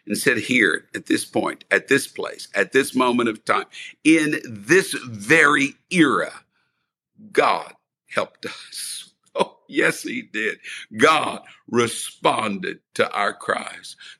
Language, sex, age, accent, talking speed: English, male, 60-79, American, 125 wpm